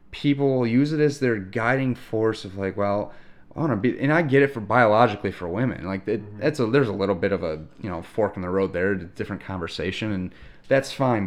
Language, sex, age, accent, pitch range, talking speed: English, male, 30-49, American, 100-135 Hz, 225 wpm